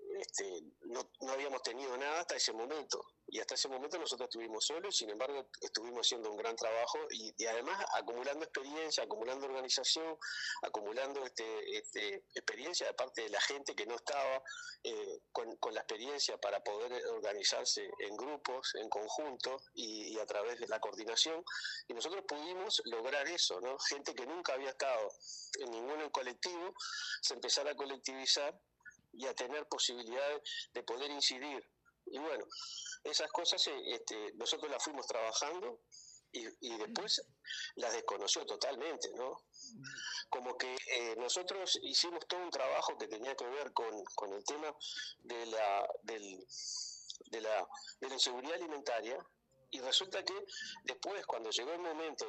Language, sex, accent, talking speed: Spanish, male, Argentinian, 155 wpm